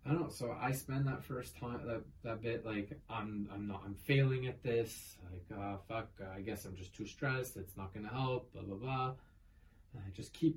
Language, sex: English, male